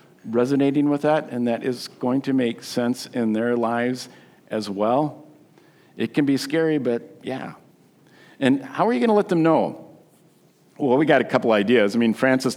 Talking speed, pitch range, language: 185 wpm, 115-160 Hz, English